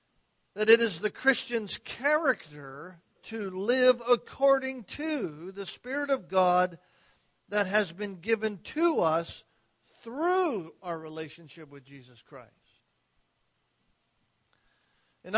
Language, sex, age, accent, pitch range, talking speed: English, male, 50-69, American, 180-230 Hz, 105 wpm